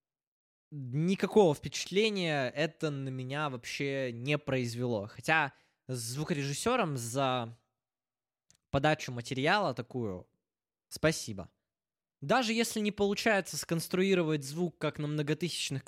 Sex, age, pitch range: male, 20-39, 140-185 Hz